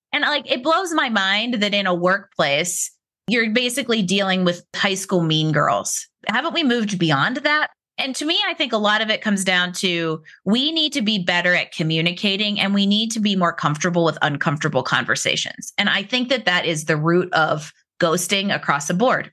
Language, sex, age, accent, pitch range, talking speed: English, female, 30-49, American, 175-240 Hz, 200 wpm